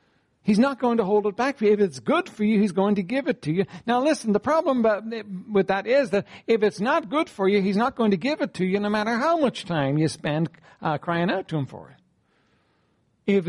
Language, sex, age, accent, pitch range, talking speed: English, male, 60-79, American, 160-235 Hz, 260 wpm